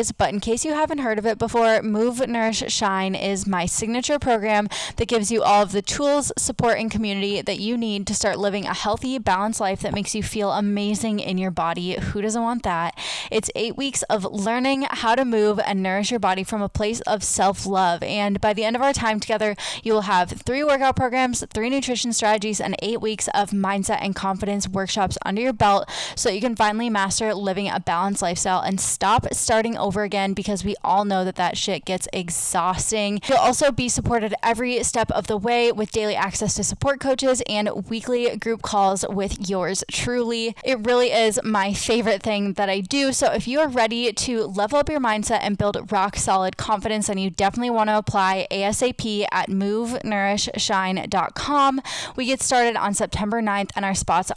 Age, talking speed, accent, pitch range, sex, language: 10-29, 200 wpm, American, 200-230 Hz, female, English